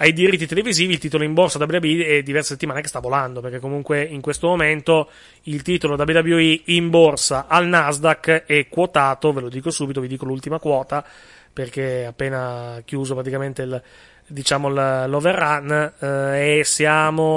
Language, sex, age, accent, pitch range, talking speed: Italian, male, 30-49, native, 140-170 Hz, 160 wpm